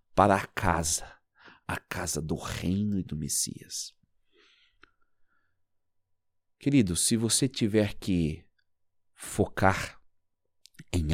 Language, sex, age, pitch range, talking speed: Portuguese, male, 50-69, 90-125 Hz, 90 wpm